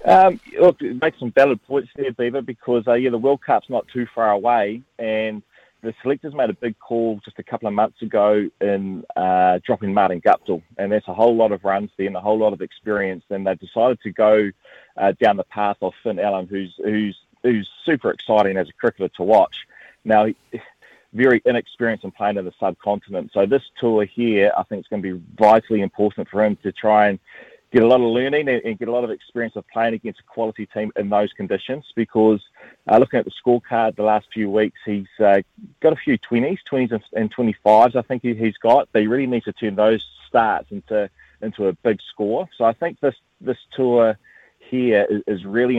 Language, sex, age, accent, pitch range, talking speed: English, male, 30-49, Australian, 100-115 Hz, 215 wpm